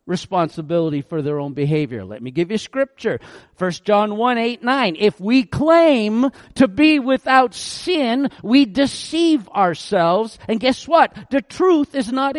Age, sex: 50-69, male